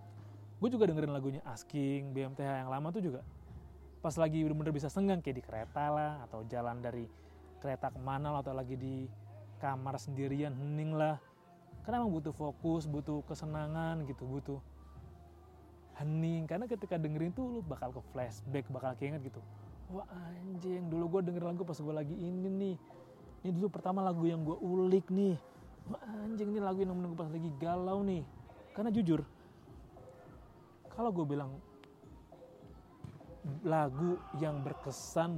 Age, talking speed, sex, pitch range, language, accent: 20-39, 150 wpm, male, 130-165 Hz, Indonesian, native